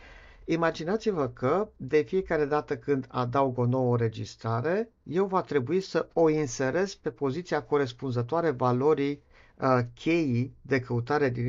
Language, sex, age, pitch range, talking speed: Romanian, male, 50-69, 125-170 Hz, 130 wpm